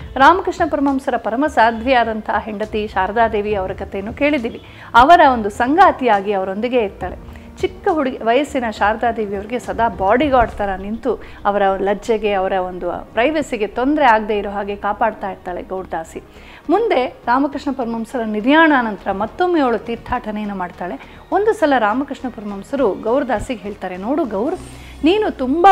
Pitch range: 210-280 Hz